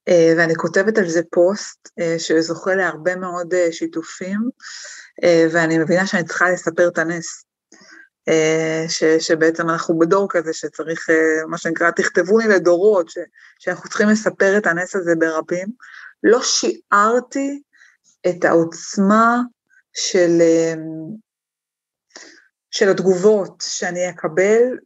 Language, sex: Hebrew, female